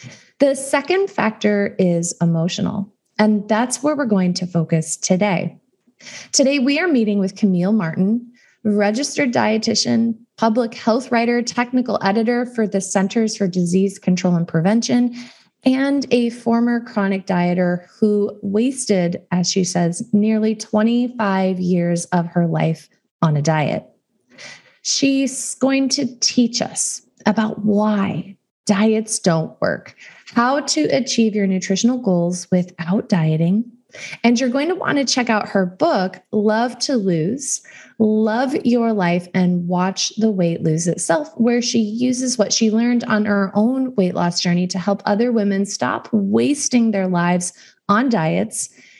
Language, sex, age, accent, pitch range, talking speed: English, female, 20-39, American, 185-240 Hz, 140 wpm